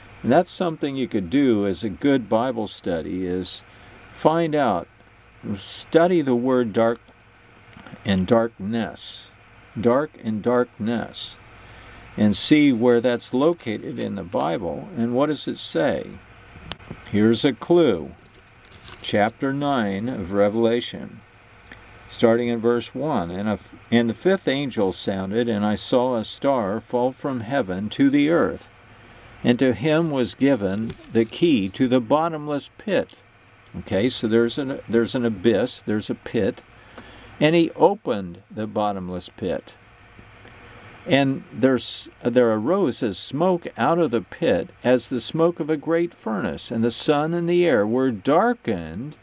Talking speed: 140 wpm